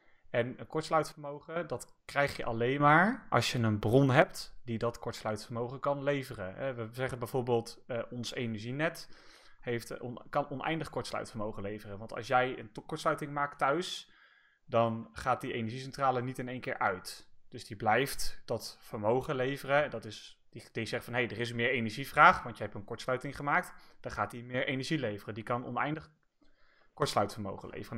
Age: 30-49